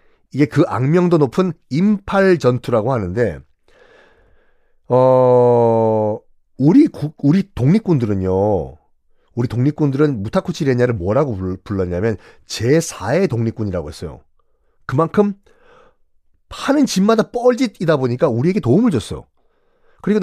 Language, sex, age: Korean, male, 40-59